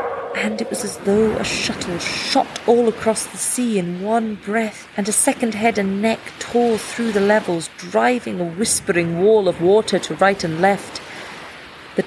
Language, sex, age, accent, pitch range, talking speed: English, female, 40-59, British, 185-230 Hz, 180 wpm